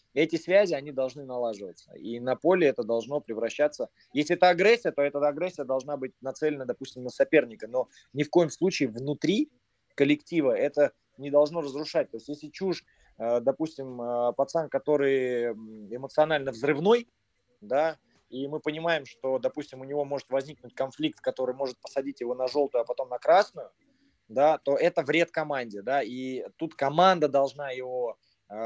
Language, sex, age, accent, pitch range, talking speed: Russian, male, 20-39, native, 130-155 Hz, 155 wpm